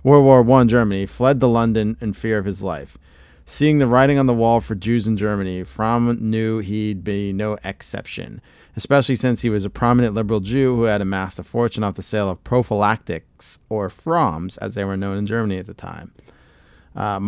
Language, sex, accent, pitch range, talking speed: English, male, American, 100-120 Hz, 200 wpm